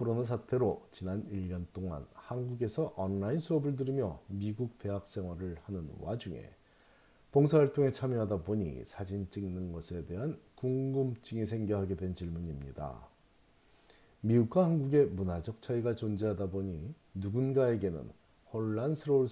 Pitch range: 95-130 Hz